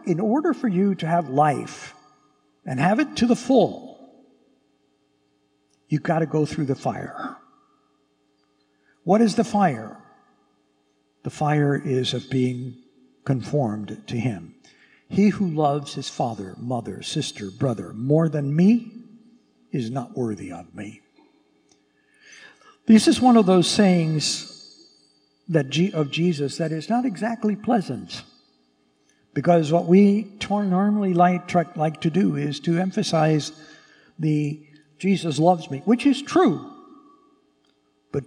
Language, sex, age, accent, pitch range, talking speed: English, male, 60-79, American, 110-180 Hz, 125 wpm